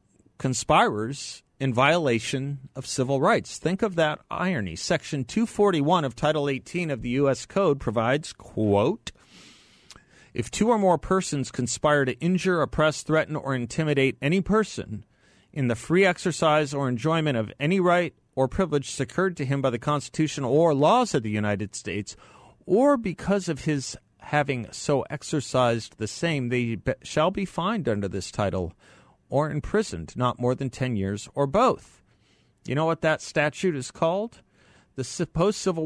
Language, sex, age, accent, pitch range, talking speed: English, male, 40-59, American, 120-155 Hz, 155 wpm